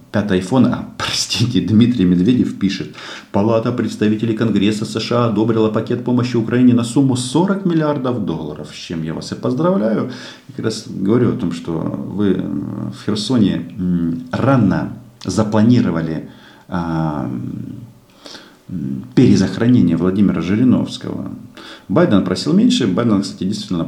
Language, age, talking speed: Russian, 40-59, 110 wpm